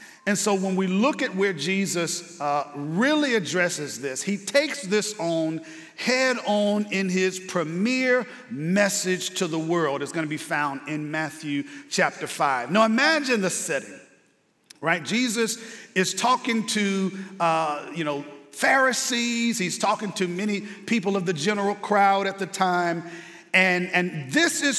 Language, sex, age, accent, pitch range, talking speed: English, male, 50-69, American, 180-235 Hz, 155 wpm